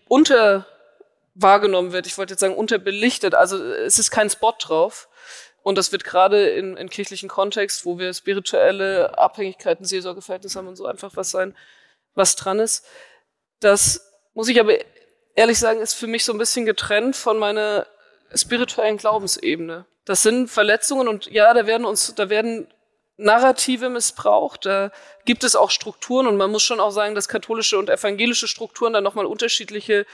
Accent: German